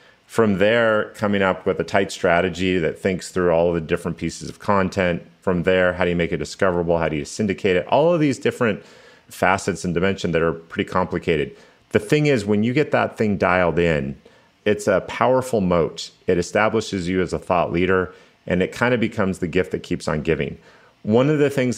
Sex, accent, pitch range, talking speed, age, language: male, American, 85-105 Hz, 210 wpm, 30-49, English